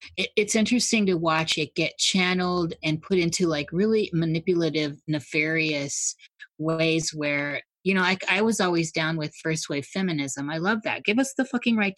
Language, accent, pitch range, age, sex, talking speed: English, American, 155-190 Hz, 30-49, female, 175 wpm